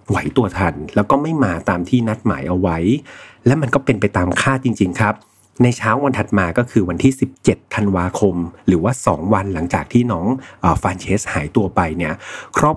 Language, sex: Thai, male